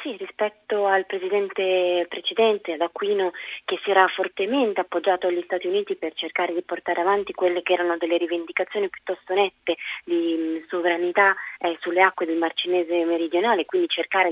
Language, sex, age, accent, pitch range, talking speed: Italian, female, 20-39, native, 170-195 Hz, 160 wpm